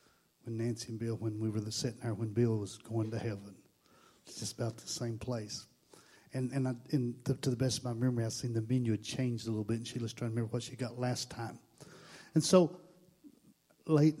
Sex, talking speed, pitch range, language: male, 230 wpm, 115-145 Hz, English